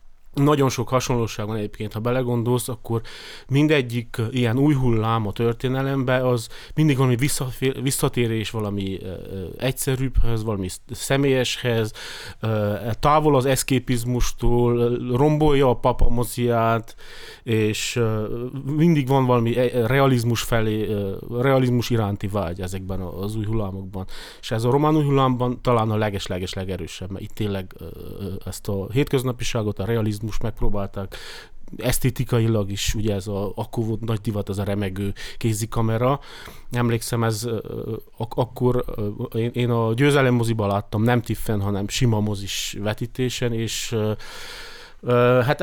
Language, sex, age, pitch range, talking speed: Hungarian, male, 30-49, 105-125 Hz, 120 wpm